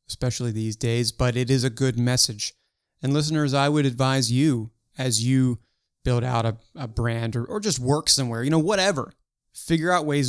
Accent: American